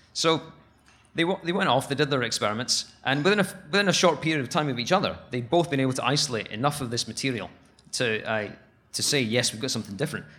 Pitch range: 115-140 Hz